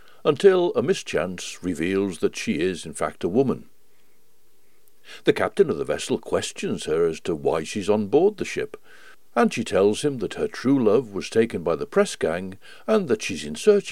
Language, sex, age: English, male, 60-79